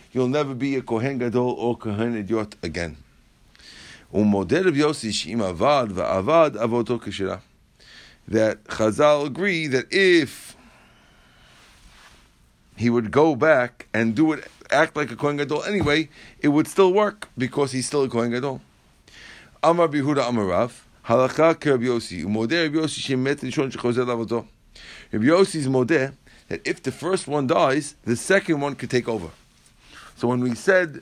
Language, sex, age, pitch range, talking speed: English, male, 50-69, 115-150 Hz, 110 wpm